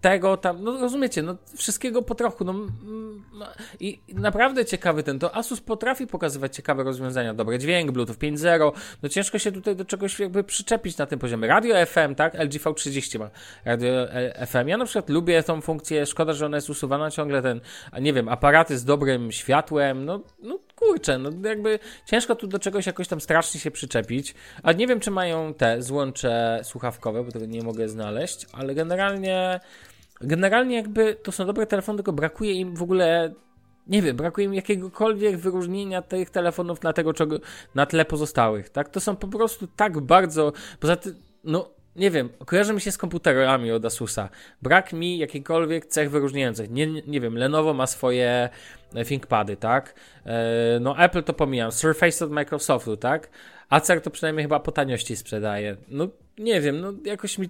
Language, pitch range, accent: Polish, 135-195 Hz, native